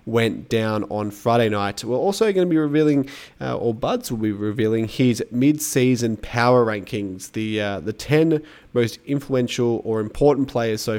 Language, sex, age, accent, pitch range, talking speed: English, male, 20-39, Australian, 105-130 Hz, 170 wpm